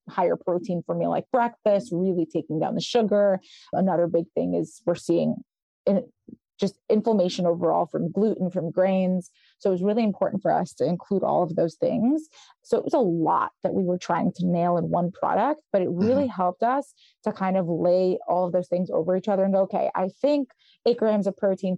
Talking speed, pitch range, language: 210 wpm, 175-215 Hz, English